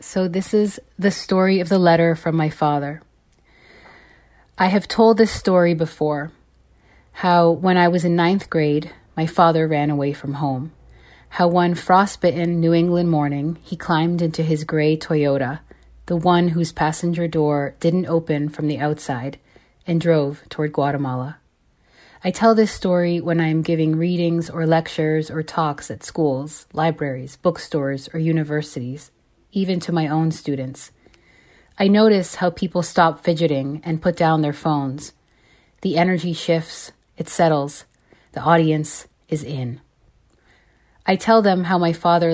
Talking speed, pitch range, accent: 150 wpm, 150-175 Hz, American